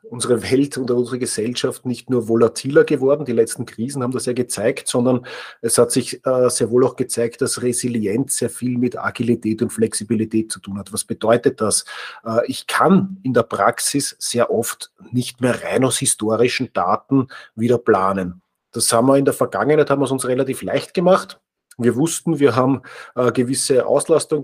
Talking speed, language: 185 wpm, German